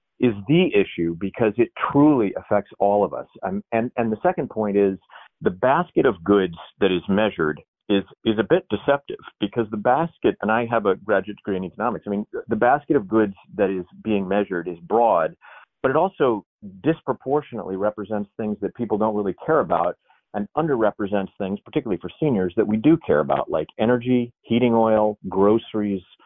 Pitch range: 100-130 Hz